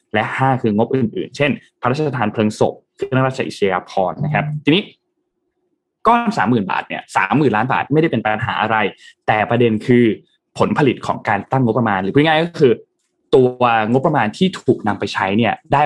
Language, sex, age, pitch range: Thai, male, 20-39, 110-155 Hz